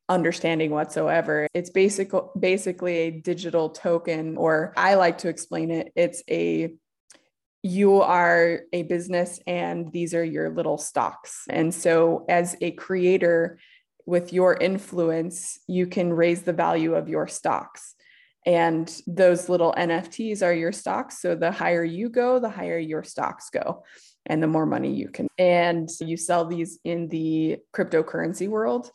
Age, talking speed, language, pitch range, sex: 20-39, 150 wpm, English, 165-190 Hz, female